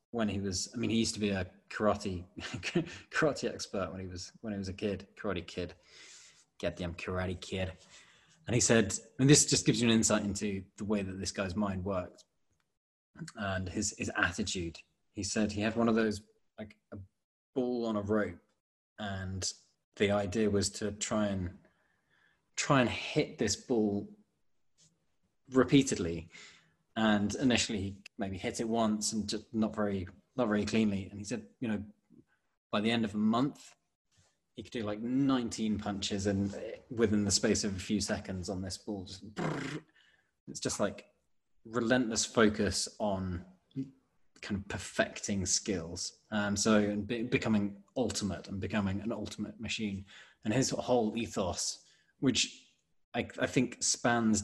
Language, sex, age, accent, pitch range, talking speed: English, male, 20-39, British, 95-110 Hz, 160 wpm